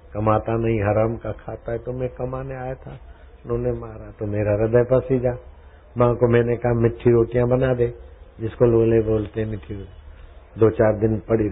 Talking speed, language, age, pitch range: 175 wpm, Hindi, 60-79, 90-125 Hz